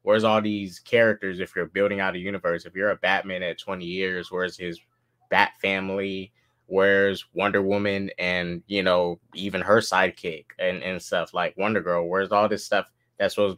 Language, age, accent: English, 20-39, American